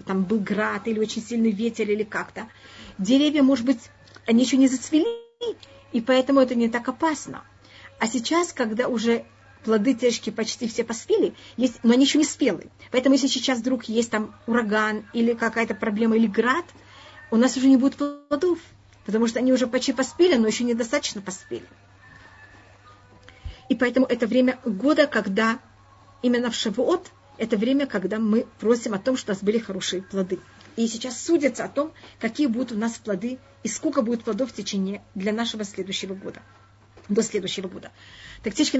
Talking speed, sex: 170 wpm, female